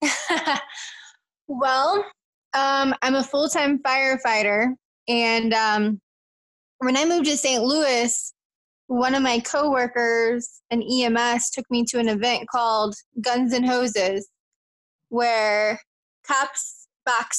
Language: English